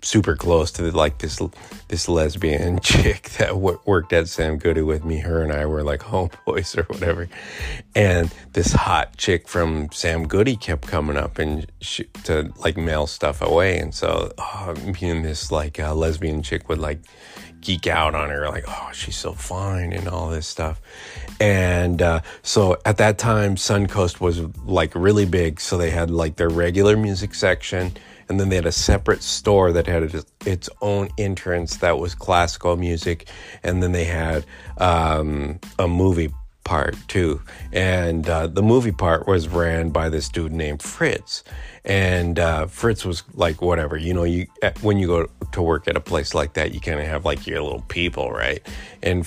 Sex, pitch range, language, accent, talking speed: male, 80-90 Hz, English, American, 185 wpm